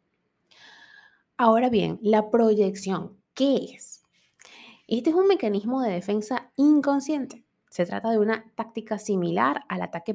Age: 20-39